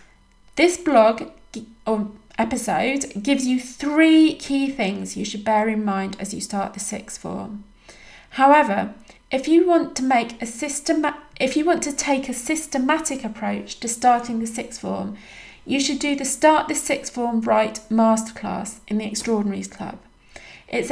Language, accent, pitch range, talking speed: English, British, 210-255 Hz, 160 wpm